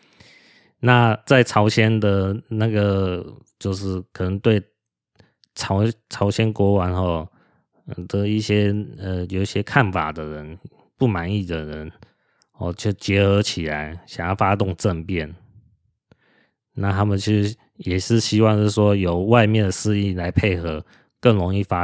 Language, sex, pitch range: Chinese, male, 90-110 Hz